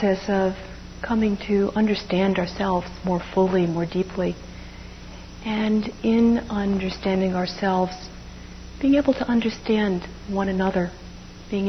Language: English